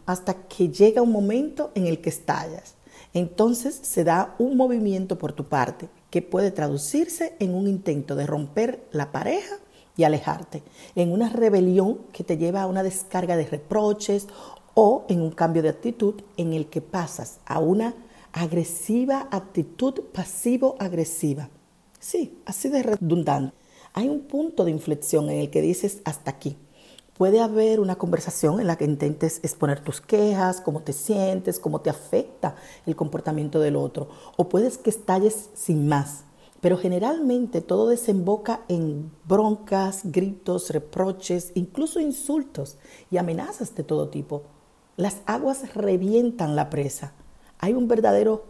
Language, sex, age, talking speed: German, female, 50-69, 150 wpm